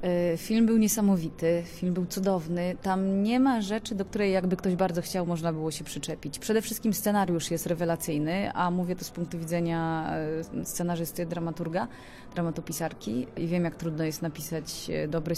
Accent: native